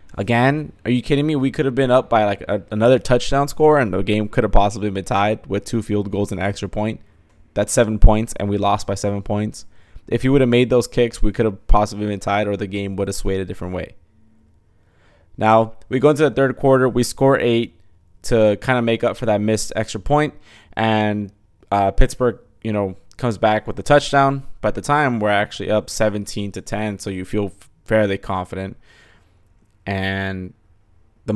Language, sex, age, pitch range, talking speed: English, male, 20-39, 95-115 Hz, 205 wpm